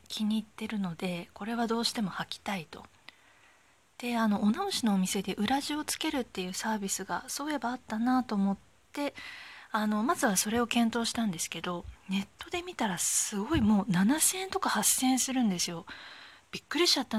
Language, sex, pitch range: Japanese, female, 195-275 Hz